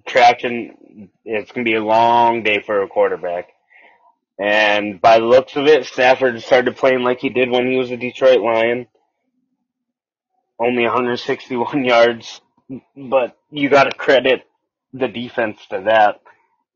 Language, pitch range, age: English, 105-130 Hz, 20-39